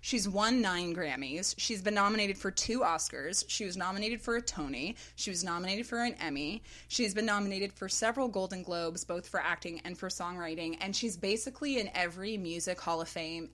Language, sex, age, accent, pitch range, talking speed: English, female, 20-39, American, 170-230 Hz, 195 wpm